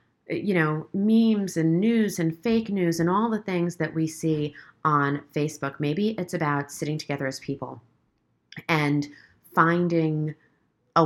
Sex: female